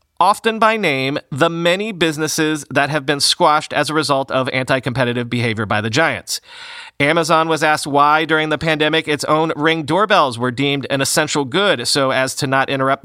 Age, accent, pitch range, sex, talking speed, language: 30-49, American, 135-170 Hz, male, 185 wpm, English